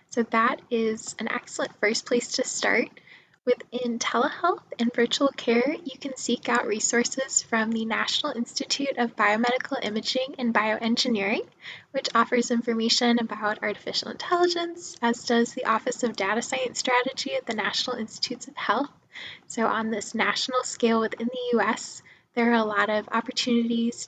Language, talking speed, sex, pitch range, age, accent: English, 155 wpm, female, 220-255 Hz, 10-29, American